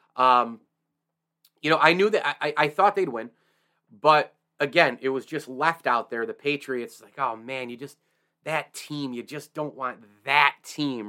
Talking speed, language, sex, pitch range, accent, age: 185 wpm, English, male, 125-145 Hz, American, 30-49